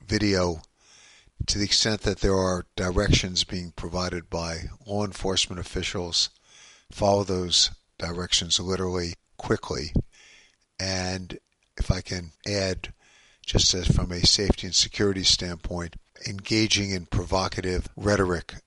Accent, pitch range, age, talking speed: American, 85-100 Hz, 50-69, 115 wpm